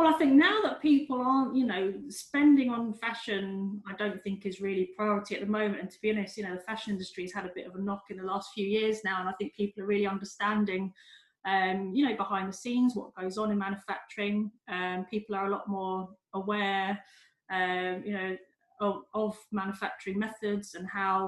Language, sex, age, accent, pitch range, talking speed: English, female, 30-49, British, 190-220 Hz, 220 wpm